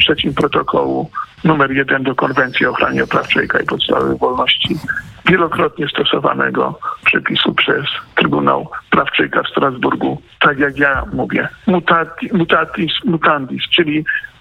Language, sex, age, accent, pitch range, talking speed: Polish, male, 50-69, native, 190-235 Hz, 125 wpm